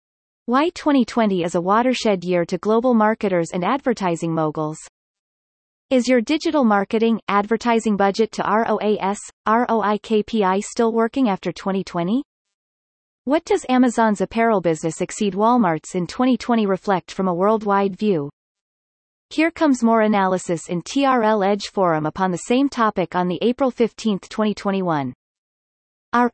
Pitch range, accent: 185-240 Hz, American